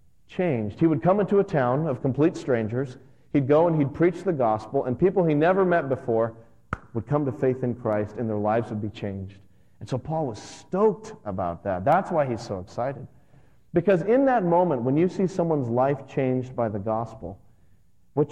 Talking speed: 200 wpm